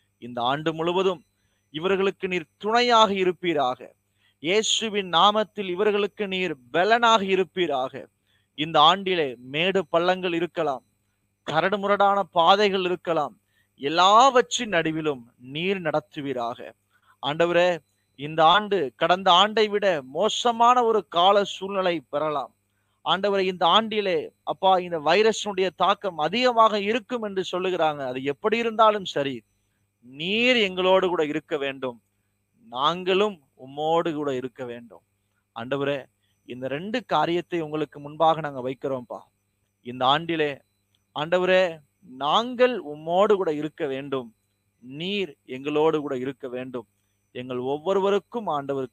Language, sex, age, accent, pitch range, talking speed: Tamil, male, 30-49, native, 125-195 Hz, 105 wpm